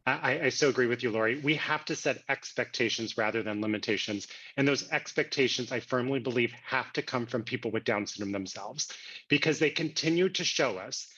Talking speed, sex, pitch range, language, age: 195 wpm, male, 120-150 Hz, English, 30-49